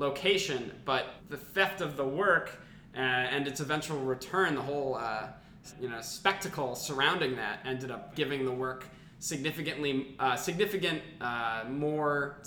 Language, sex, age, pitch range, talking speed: English, male, 20-39, 125-150 Hz, 145 wpm